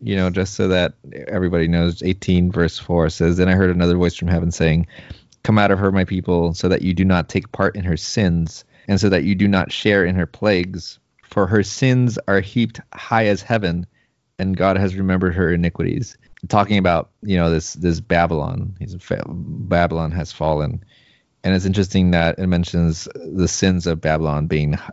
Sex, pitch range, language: male, 85-100 Hz, English